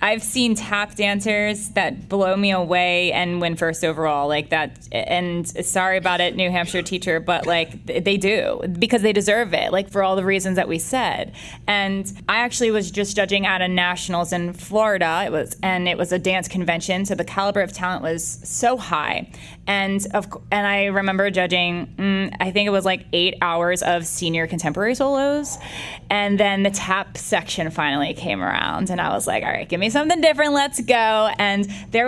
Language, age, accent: English, 20-39, American